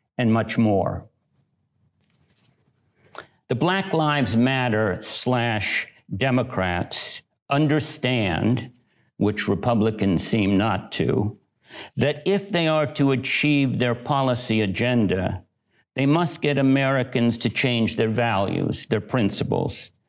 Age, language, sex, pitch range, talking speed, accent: 60-79, English, male, 110-140 Hz, 100 wpm, American